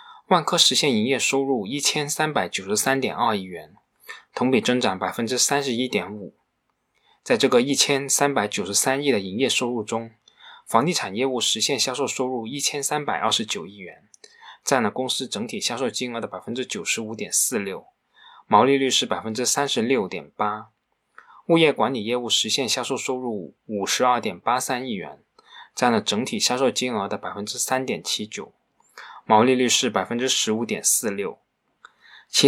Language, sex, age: Chinese, male, 20-39